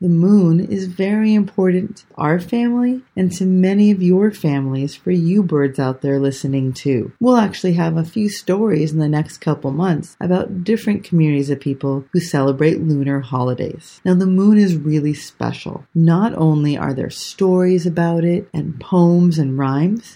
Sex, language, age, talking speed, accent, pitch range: female, English, 40-59, 175 wpm, American, 145-190 Hz